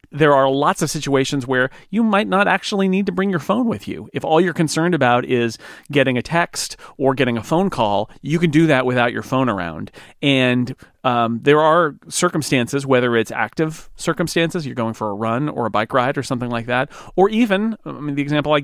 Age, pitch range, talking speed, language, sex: 40-59, 115-155 Hz, 220 wpm, English, male